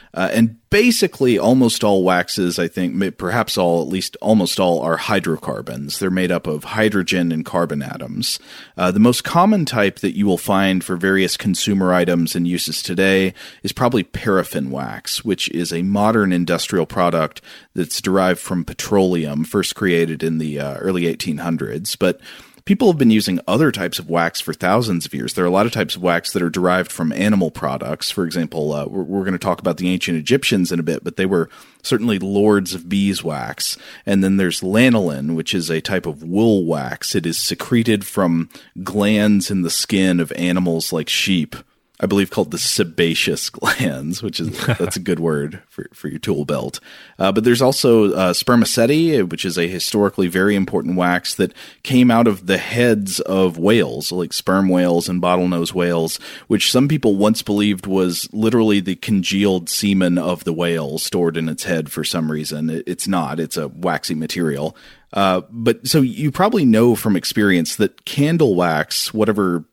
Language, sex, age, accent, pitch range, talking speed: English, male, 30-49, American, 85-105 Hz, 185 wpm